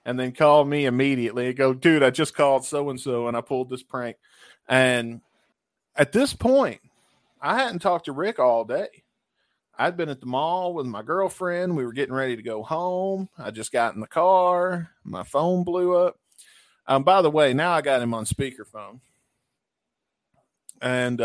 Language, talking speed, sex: English, 185 wpm, male